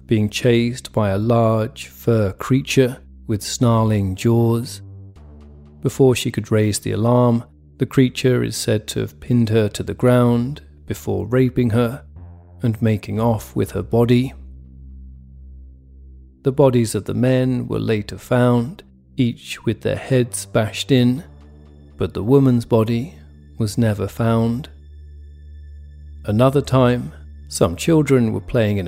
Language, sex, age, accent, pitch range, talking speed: English, male, 40-59, British, 75-125 Hz, 135 wpm